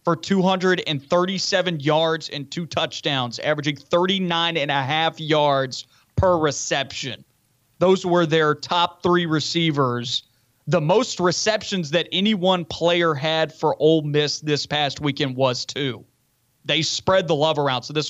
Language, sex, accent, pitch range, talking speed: English, male, American, 140-165 Hz, 145 wpm